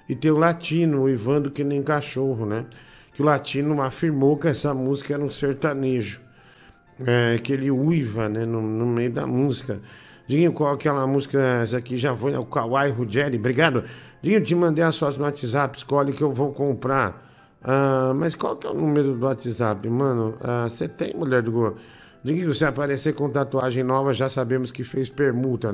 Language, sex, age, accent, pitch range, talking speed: Portuguese, male, 50-69, Brazilian, 125-140 Hz, 195 wpm